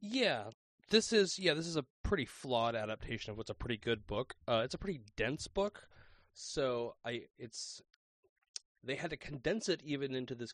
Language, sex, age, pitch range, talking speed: English, male, 20-39, 105-135 Hz, 190 wpm